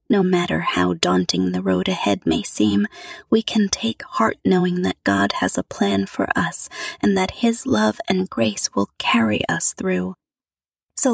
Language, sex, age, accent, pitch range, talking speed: English, female, 20-39, American, 185-245 Hz, 170 wpm